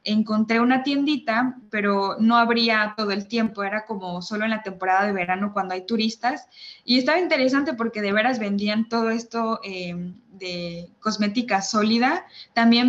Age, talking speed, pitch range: 20-39, 160 wpm, 200-245 Hz